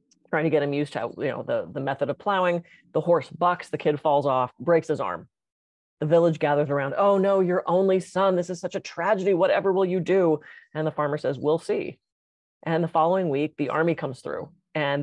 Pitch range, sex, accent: 145-180 Hz, female, American